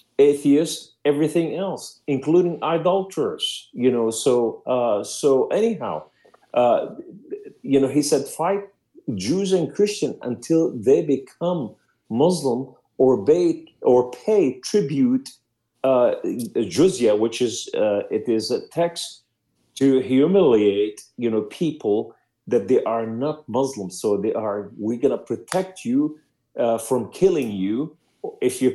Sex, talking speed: male, 125 wpm